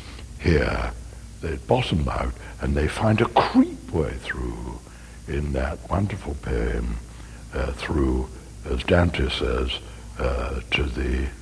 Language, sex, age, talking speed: English, male, 60-79, 120 wpm